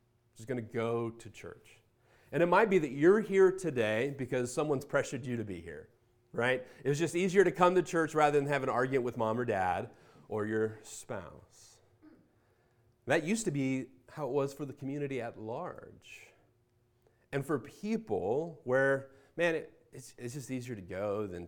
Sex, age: male, 30-49